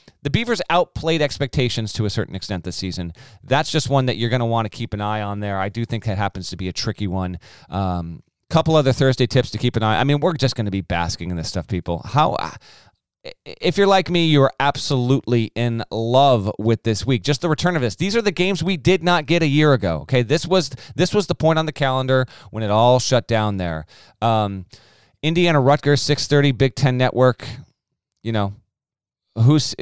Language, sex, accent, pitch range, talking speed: English, male, American, 105-140 Hz, 225 wpm